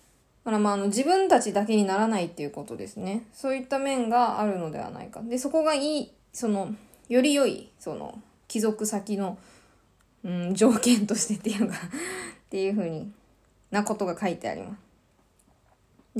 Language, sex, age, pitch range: Japanese, female, 20-39, 190-240 Hz